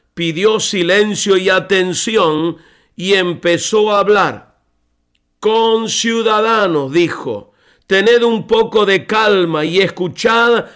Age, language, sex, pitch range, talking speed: 50-69, Spanish, male, 180-220 Hz, 100 wpm